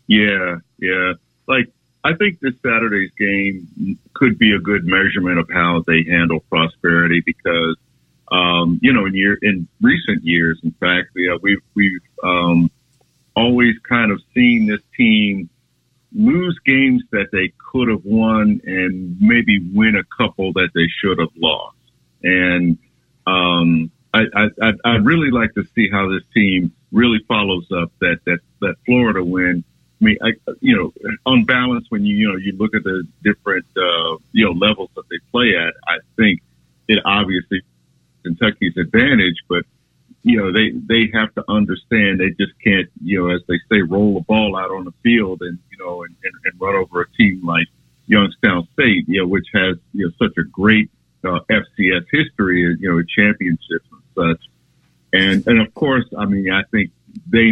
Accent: American